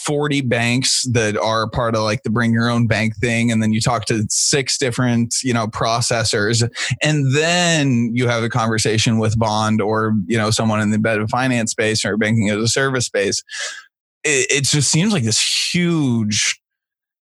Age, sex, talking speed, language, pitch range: 20-39, male, 190 wpm, English, 110-135 Hz